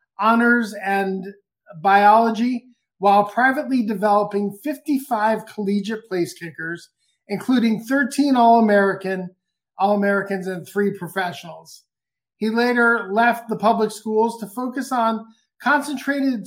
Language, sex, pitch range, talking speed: English, male, 195-225 Hz, 95 wpm